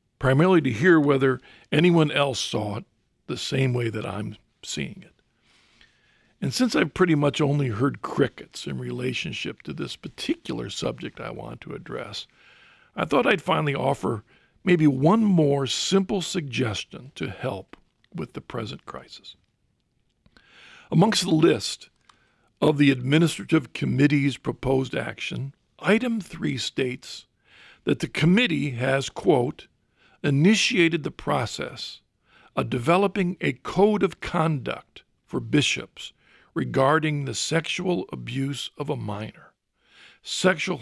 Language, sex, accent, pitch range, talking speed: English, male, American, 125-170 Hz, 125 wpm